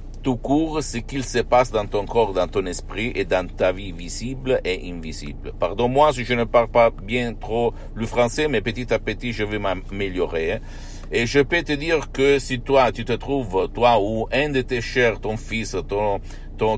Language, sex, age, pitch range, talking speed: Italian, male, 60-79, 95-120 Hz, 205 wpm